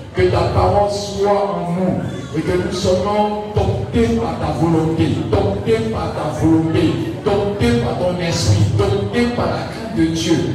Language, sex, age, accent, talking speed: French, male, 50-69, French, 160 wpm